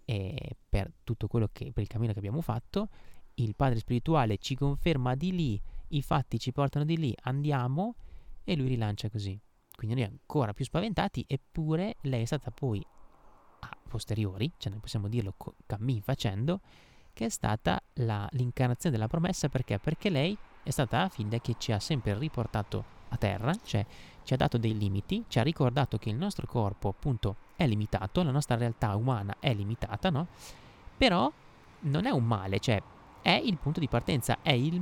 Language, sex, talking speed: Italian, male, 180 wpm